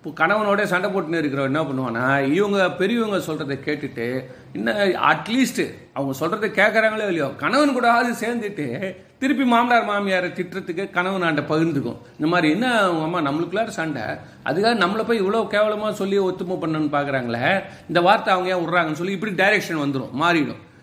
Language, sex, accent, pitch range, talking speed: Tamil, male, native, 145-205 Hz, 155 wpm